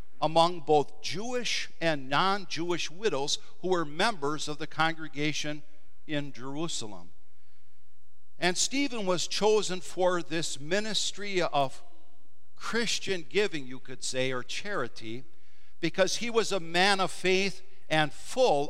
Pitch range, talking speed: 120-185 Hz, 120 wpm